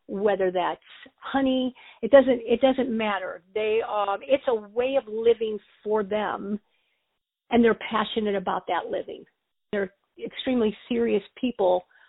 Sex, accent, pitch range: female, American, 205-255 Hz